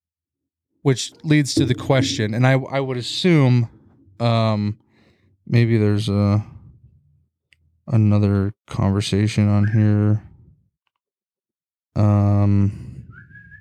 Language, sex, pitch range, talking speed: English, male, 105-130 Hz, 85 wpm